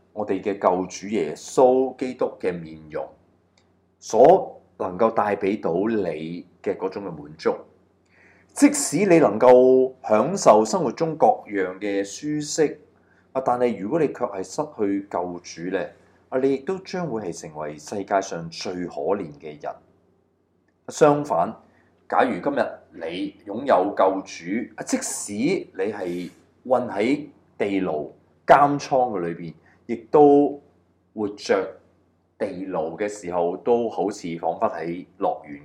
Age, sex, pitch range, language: 30-49, male, 85-130 Hz, Chinese